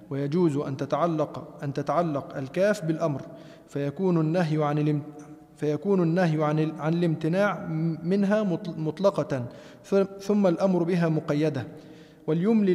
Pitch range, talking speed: 155-190 Hz, 105 wpm